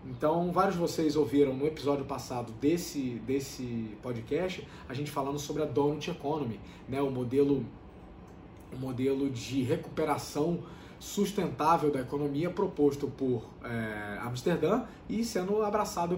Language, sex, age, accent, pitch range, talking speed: Portuguese, male, 20-39, Brazilian, 125-160 Hz, 130 wpm